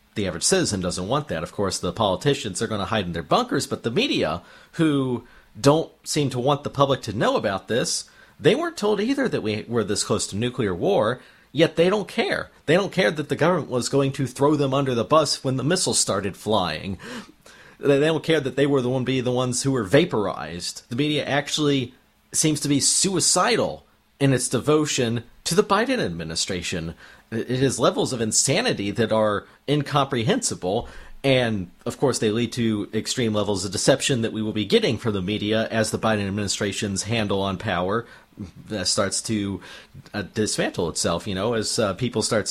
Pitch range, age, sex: 105-145 Hz, 40-59, male